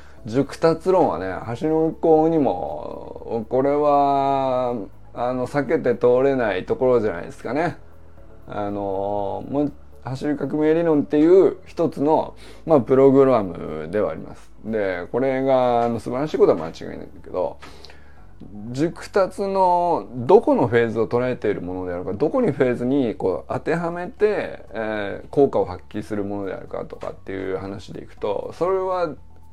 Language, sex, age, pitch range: Japanese, male, 20-39, 105-170 Hz